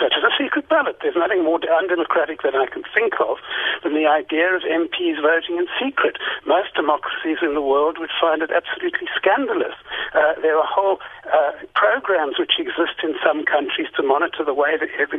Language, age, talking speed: English, 60-79, 190 wpm